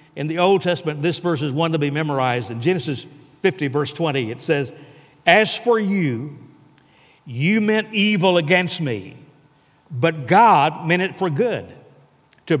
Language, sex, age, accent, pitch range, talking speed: English, male, 60-79, American, 150-225 Hz, 155 wpm